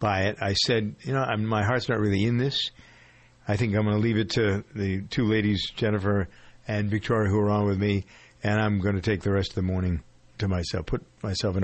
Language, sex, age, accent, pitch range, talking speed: English, male, 50-69, American, 100-120 Hz, 240 wpm